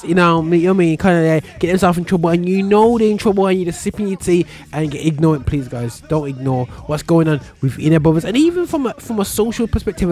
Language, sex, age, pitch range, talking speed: English, male, 20-39, 145-205 Hz, 260 wpm